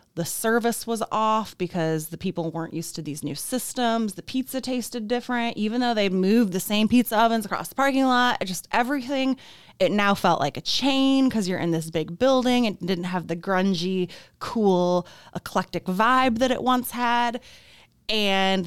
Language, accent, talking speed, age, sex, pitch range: English, American, 180 wpm, 20-39, female, 170-230 Hz